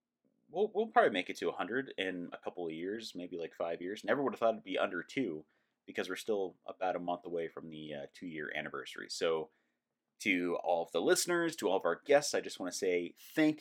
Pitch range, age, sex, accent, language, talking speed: 85-135 Hz, 30-49, male, American, English, 240 wpm